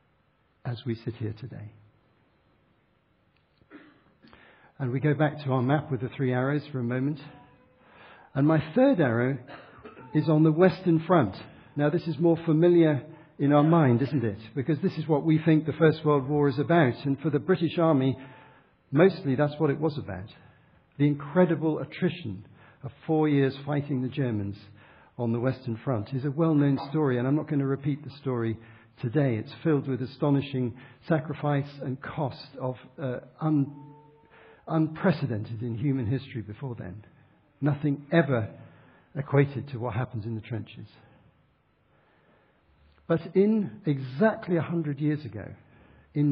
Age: 60-79